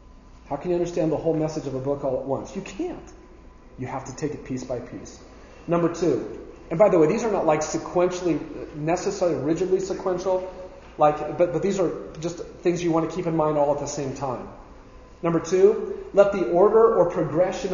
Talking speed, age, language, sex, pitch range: 210 wpm, 40-59, English, male, 150-200 Hz